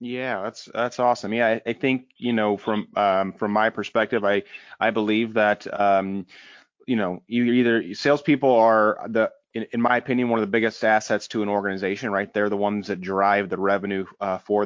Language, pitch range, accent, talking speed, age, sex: English, 105-125 Hz, American, 200 wpm, 30-49, male